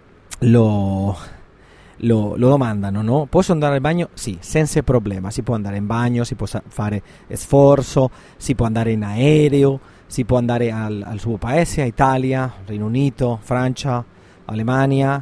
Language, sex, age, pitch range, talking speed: Italian, male, 30-49, 110-135 Hz, 150 wpm